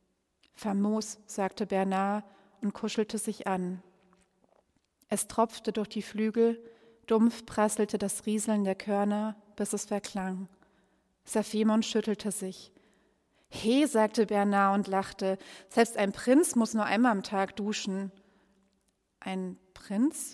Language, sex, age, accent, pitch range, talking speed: German, female, 30-49, German, 195-220 Hz, 120 wpm